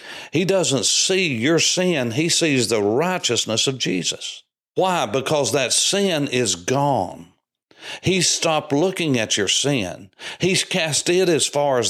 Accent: American